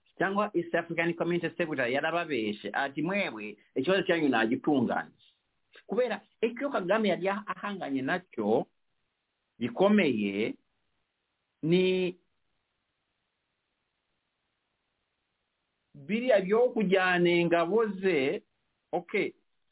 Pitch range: 160-210 Hz